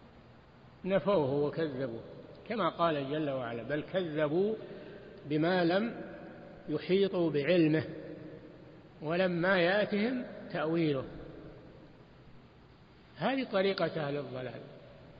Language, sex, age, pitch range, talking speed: Arabic, male, 60-79, 155-195 Hz, 75 wpm